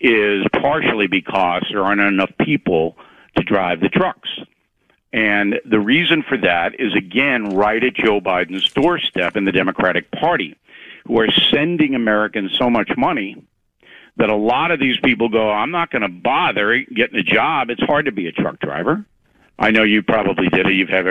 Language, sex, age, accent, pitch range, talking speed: English, male, 60-79, American, 105-150 Hz, 180 wpm